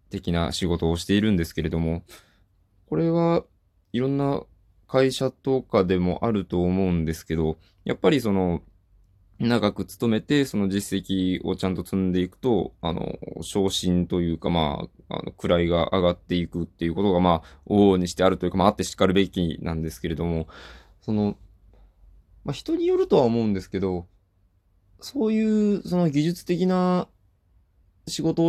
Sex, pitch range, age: male, 90-110 Hz, 20-39